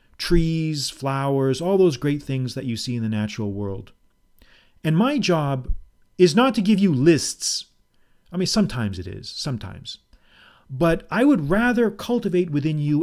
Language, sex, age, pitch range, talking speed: English, male, 40-59, 120-185 Hz, 160 wpm